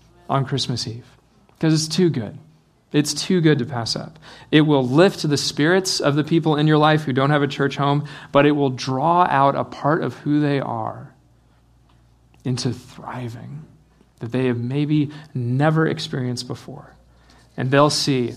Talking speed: 175 wpm